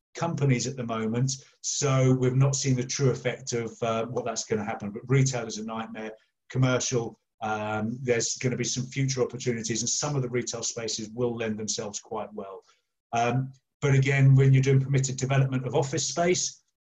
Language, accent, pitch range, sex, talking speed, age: English, British, 120-135 Hz, male, 190 wpm, 30-49